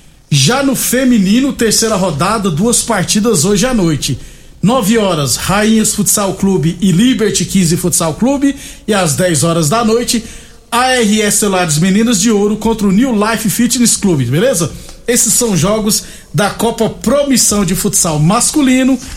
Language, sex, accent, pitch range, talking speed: Portuguese, male, Brazilian, 180-225 Hz, 145 wpm